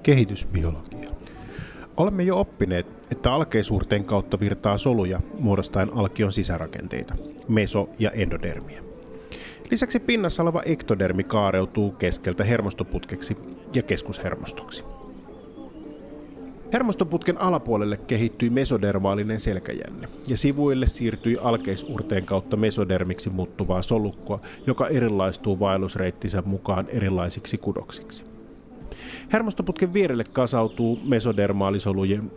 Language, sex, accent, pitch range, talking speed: Finnish, male, native, 95-115 Hz, 85 wpm